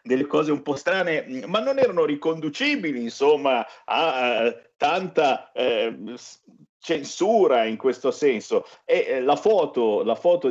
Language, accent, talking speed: Italian, native, 130 wpm